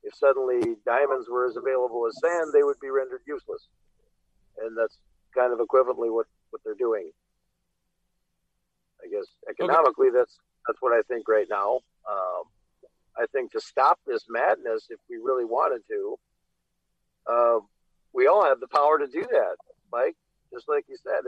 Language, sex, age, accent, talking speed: English, male, 50-69, American, 165 wpm